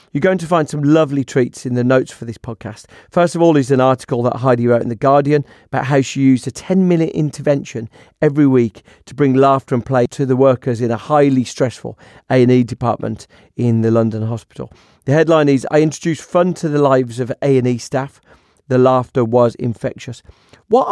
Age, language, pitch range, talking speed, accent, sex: 40-59, English, 115-150 Hz, 200 wpm, British, male